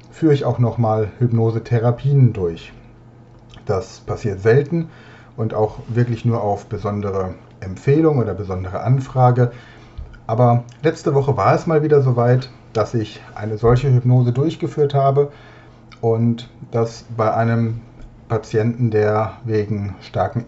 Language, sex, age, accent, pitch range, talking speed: German, male, 40-59, German, 110-130 Hz, 125 wpm